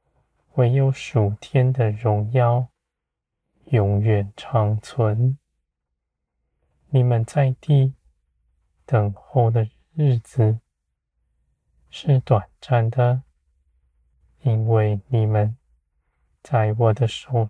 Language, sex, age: Chinese, male, 20-39